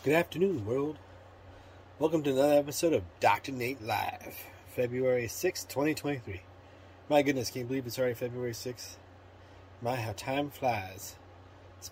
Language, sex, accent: English, male, American